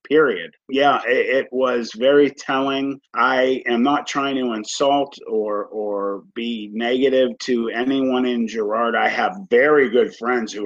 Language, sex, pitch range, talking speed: English, male, 115-140 Hz, 150 wpm